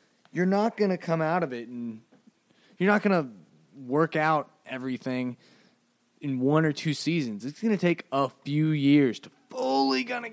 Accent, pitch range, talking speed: American, 120-165 Hz, 165 wpm